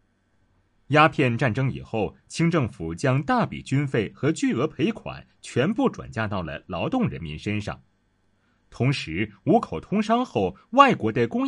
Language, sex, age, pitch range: Chinese, male, 30-49, 105-165 Hz